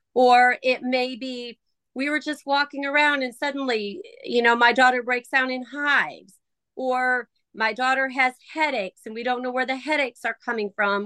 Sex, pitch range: female, 235-285 Hz